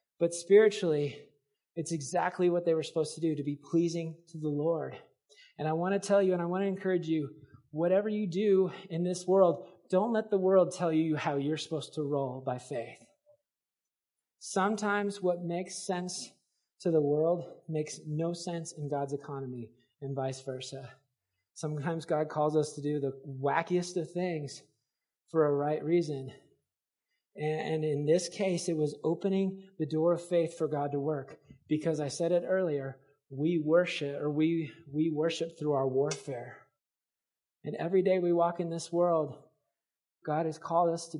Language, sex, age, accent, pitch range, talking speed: English, male, 30-49, American, 145-175 Hz, 175 wpm